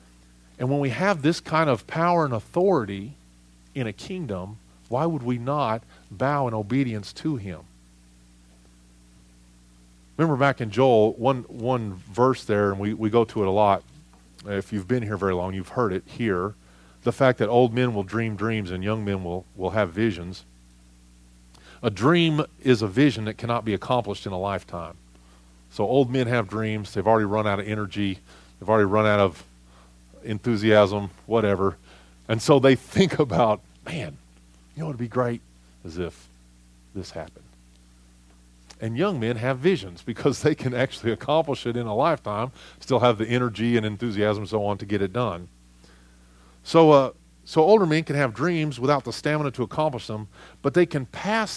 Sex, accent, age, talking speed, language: male, American, 40-59, 180 wpm, English